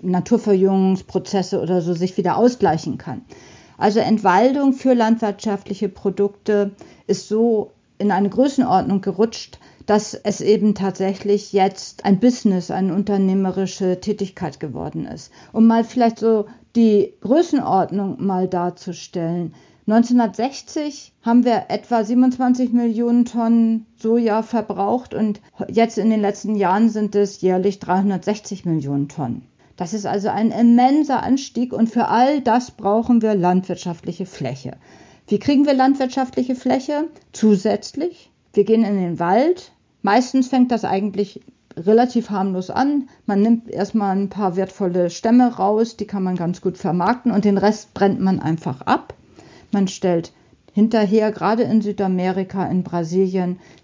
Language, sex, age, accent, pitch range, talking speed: German, female, 50-69, German, 190-230 Hz, 135 wpm